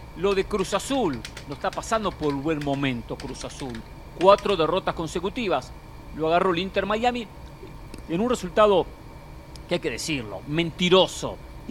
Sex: male